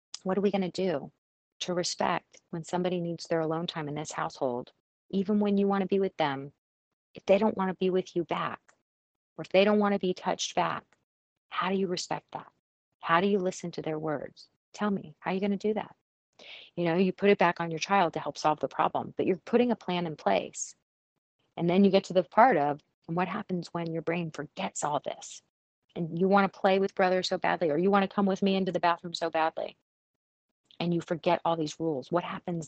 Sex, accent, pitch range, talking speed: female, American, 160-185 Hz, 240 wpm